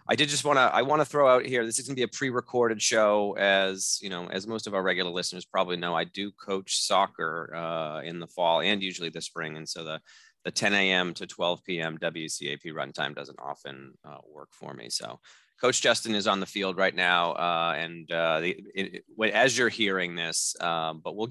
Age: 30-49